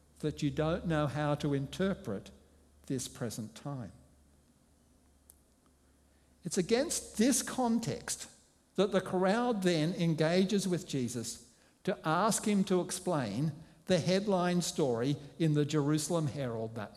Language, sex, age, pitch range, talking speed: English, male, 60-79, 120-175 Hz, 120 wpm